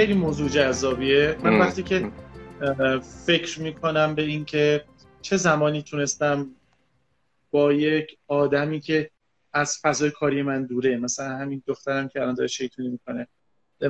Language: Persian